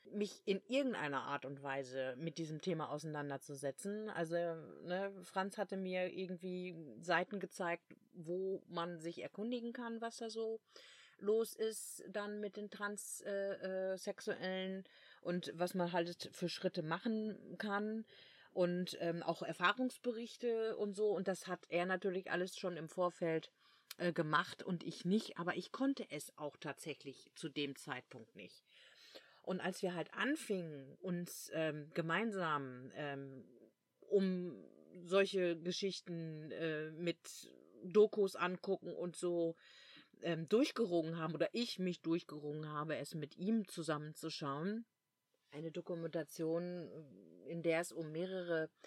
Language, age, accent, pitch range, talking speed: German, 40-59, German, 160-195 Hz, 135 wpm